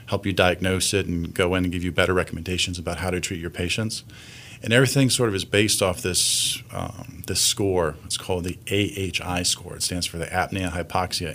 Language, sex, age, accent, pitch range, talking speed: English, male, 40-59, American, 90-120 Hz, 205 wpm